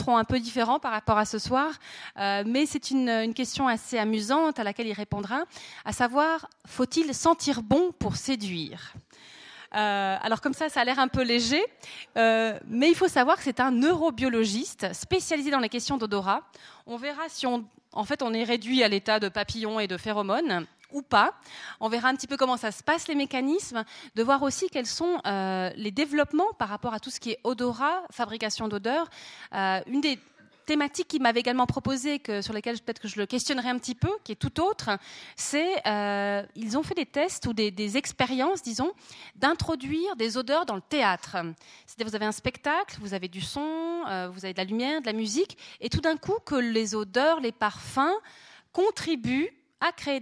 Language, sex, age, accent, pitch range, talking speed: French, female, 30-49, French, 215-285 Hz, 200 wpm